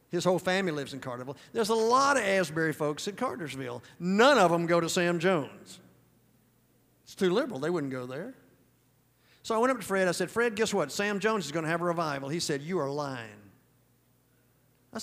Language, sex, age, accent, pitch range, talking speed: English, male, 50-69, American, 170-255 Hz, 210 wpm